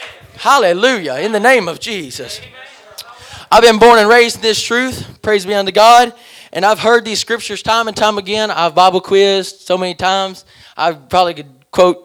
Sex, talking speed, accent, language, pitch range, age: male, 185 wpm, American, English, 190-260 Hz, 20-39